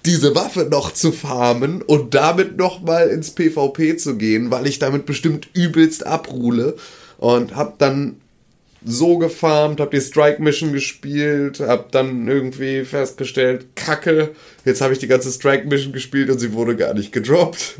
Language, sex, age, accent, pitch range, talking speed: German, male, 30-49, German, 115-145 Hz, 160 wpm